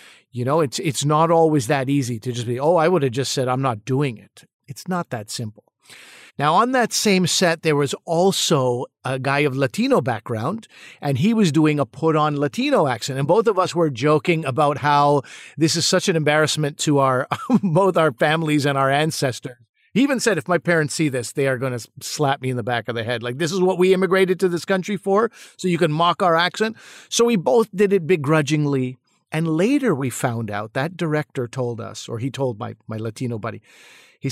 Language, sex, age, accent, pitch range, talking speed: English, male, 50-69, American, 125-170 Hz, 220 wpm